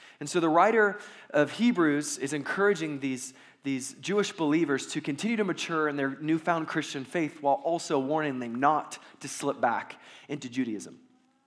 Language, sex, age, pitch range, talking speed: English, male, 20-39, 145-190 Hz, 160 wpm